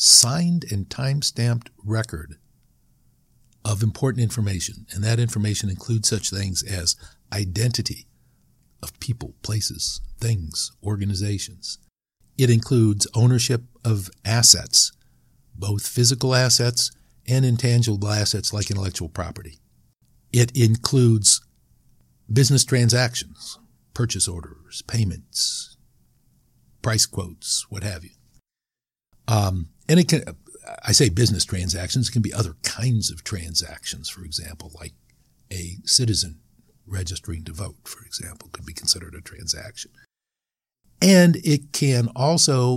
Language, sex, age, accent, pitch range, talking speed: English, male, 60-79, American, 90-120 Hz, 110 wpm